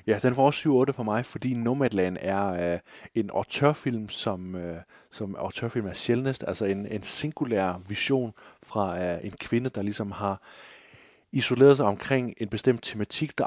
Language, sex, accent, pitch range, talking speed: Danish, male, native, 100-125 Hz, 170 wpm